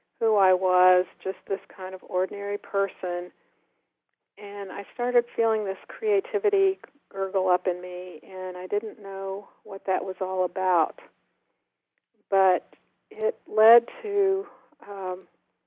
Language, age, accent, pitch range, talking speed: English, 50-69, American, 185-205 Hz, 125 wpm